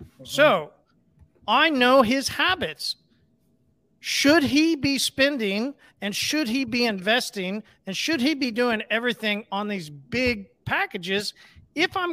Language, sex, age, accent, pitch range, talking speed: English, male, 40-59, American, 205-265 Hz, 130 wpm